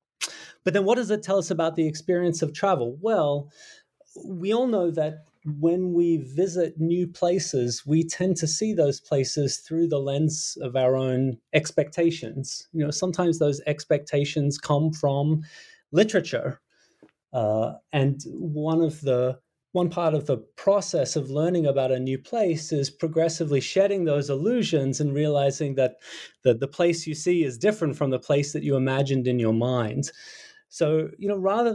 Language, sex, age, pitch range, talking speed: English, male, 30-49, 135-175 Hz, 165 wpm